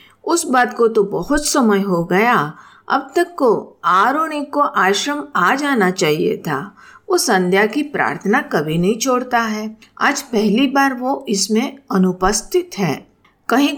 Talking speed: 150 wpm